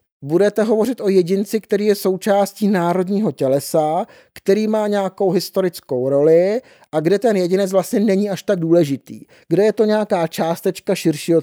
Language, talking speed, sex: Czech, 150 wpm, male